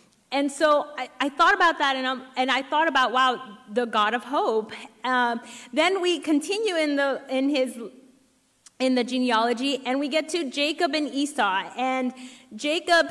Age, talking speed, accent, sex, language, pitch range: 30-49, 175 wpm, American, female, English, 250-300 Hz